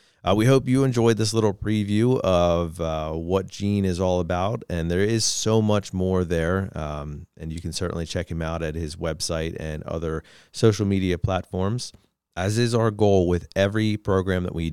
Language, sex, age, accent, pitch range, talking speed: English, male, 30-49, American, 80-100 Hz, 190 wpm